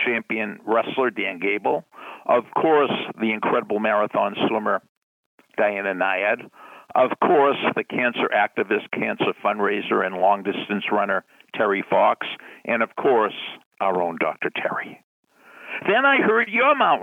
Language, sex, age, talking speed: English, male, 60-79, 125 wpm